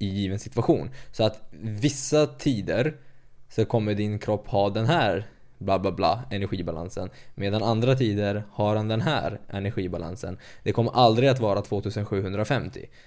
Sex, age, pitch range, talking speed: male, 20-39, 100-120 Hz, 140 wpm